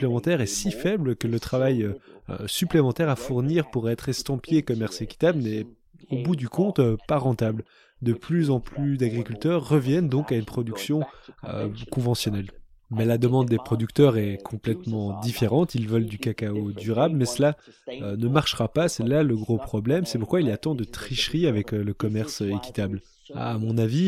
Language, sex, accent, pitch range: French, male, French, 110-140 Hz